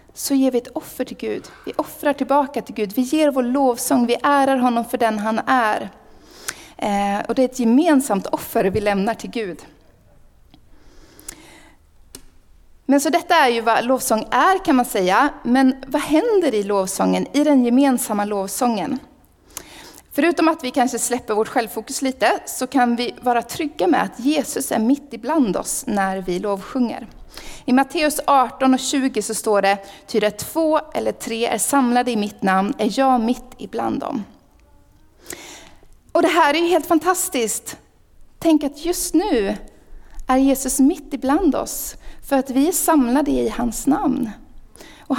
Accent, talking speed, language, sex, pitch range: native, 165 wpm, Swedish, female, 230-290 Hz